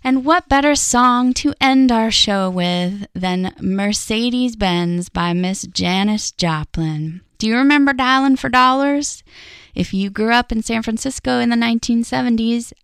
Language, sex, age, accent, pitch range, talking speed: English, female, 10-29, American, 175-240 Hz, 145 wpm